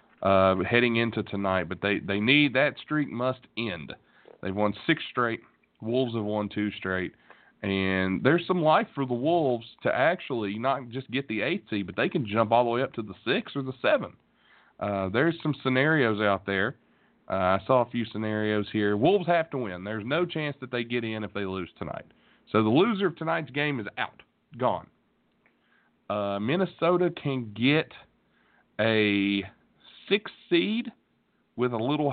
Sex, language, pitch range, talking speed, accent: male, English, 105-140 Hz, 180 wpm, American